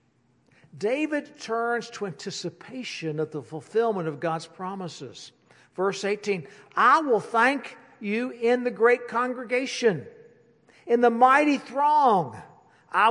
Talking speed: 115 wpm